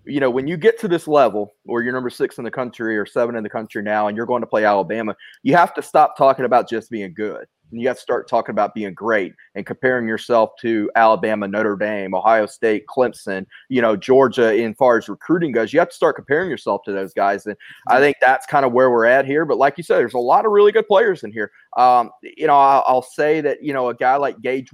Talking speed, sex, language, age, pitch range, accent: 260 wpm, male, English, 30-49, 110-135 Hz, American